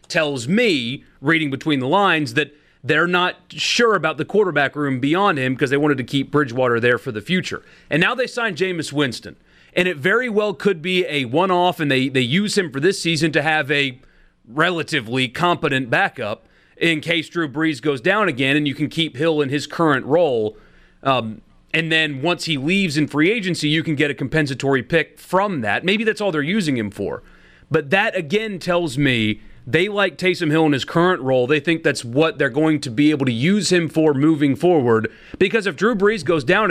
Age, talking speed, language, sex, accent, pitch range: 30-49, 210 wpm, English, male, American, 140-190 Hz